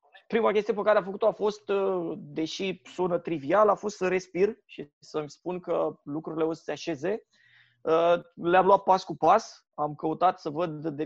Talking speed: 185 wpm